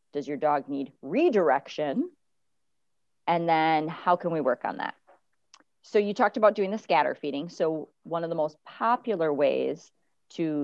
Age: 40-59